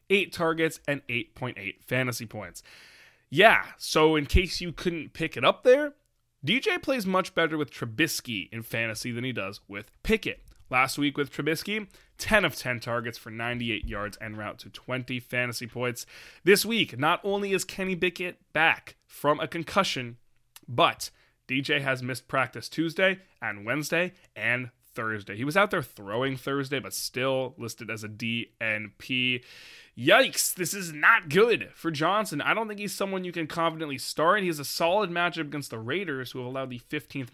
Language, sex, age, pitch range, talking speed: English, male, 20-39, 115-165 Hz, 175 wpm